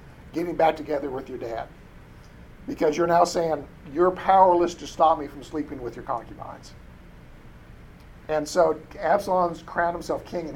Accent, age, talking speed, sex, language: American, 50-69, 155 wpm, male, English